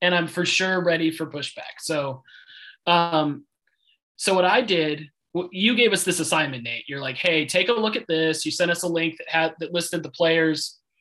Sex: male